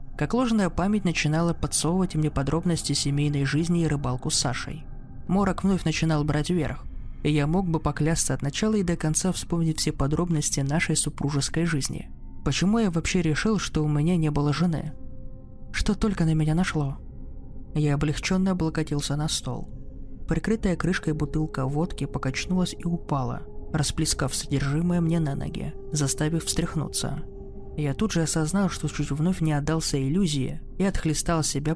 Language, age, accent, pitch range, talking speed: Russian, 20-39, native, 140-170 Hz, 155 wpm